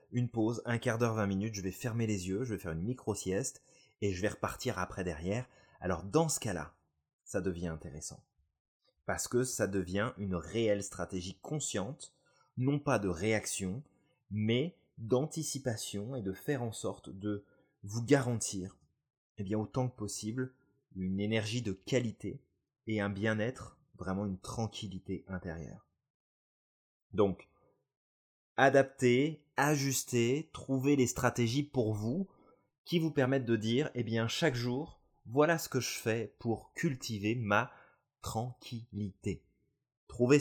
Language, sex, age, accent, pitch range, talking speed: French, male, 20-39, French, 95-125 Hz, 140 wpm